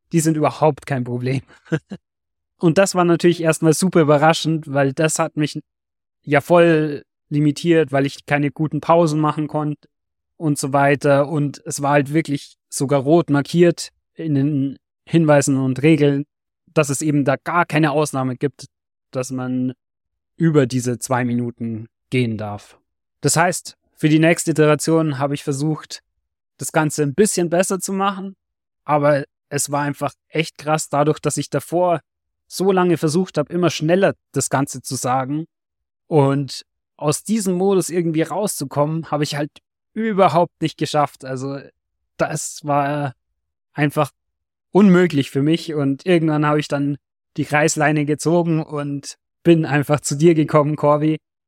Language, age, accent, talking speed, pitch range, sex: German, 30-49, German, 150 wpm, 140-160 Hz, male